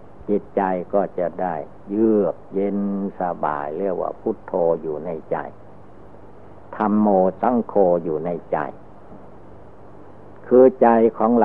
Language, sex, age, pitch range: Thai, male, 60-79, 95-110 Hz